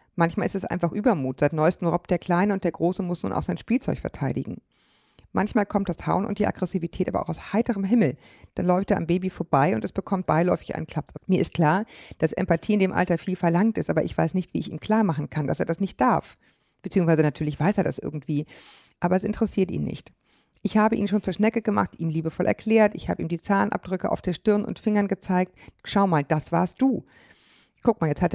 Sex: female